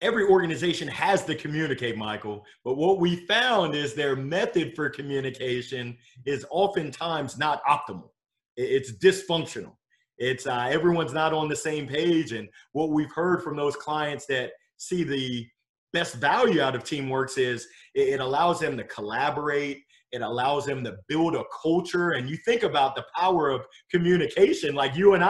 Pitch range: 135-190 Hz